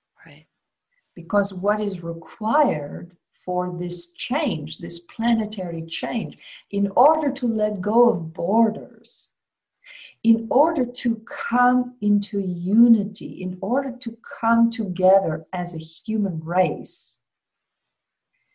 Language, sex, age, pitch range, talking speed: English, female, 50-69, 185-235 Hz, 105 wpm